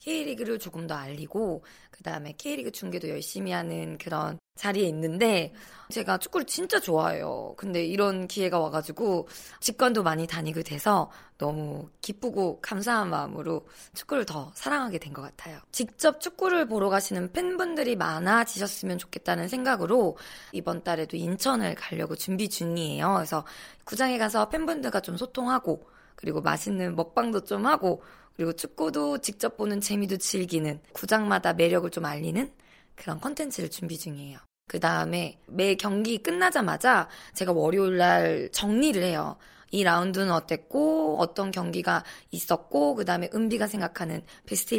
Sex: female